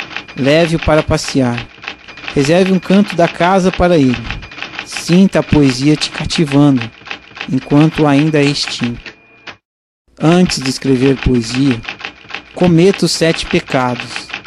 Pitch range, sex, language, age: 130-170 Hz, male, Portuguese, 50-69